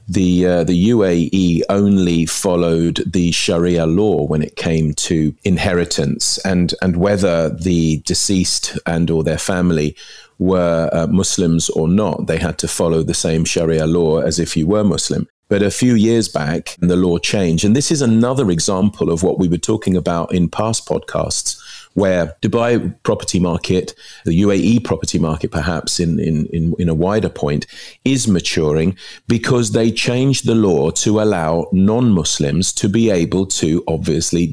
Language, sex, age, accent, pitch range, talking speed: English, male, 40-59, British, 80-100 Hz, 160 wpm